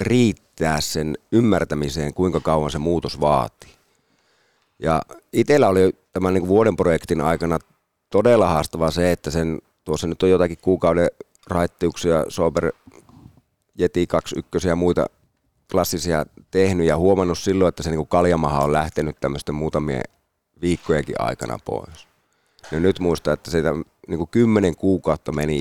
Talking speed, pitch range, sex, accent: 135 wpm, 80-95 Hz, male, native